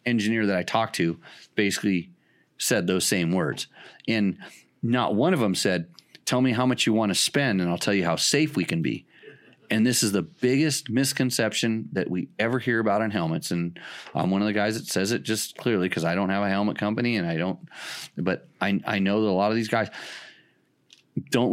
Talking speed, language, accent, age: 215 wpm, English, American, 30-49